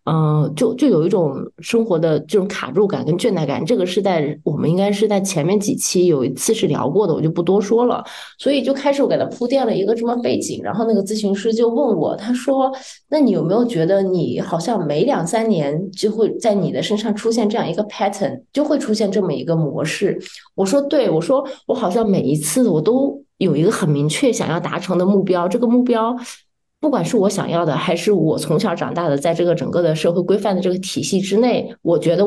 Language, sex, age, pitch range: Chinese, female, 20-39, 170-235 Hz